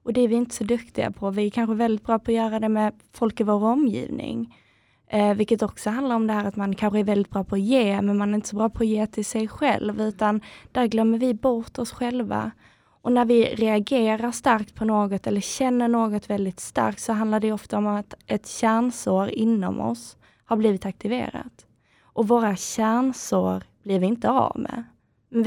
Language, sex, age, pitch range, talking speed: Swedish, female, 20-39, 200-235 Hz, 215 wpm